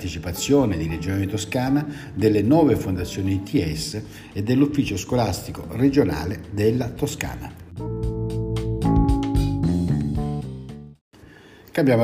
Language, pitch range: Italian, 95-120 Hz